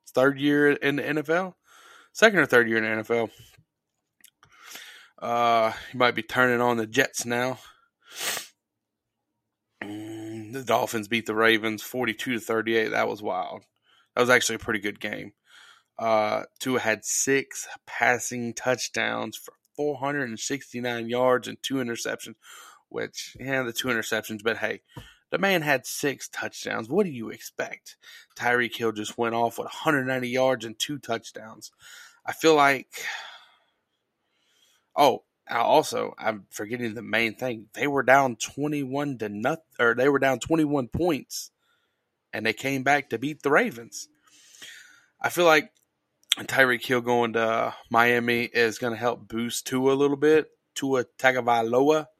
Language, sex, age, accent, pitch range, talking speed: English, male, 20-39, American, 115-135 Hz, 145 wpm